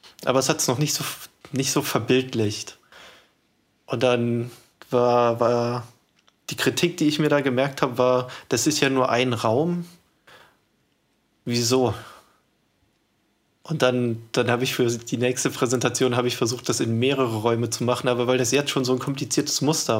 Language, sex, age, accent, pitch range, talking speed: German, male, 20-39, German, 120-145 Hz, 170 wpm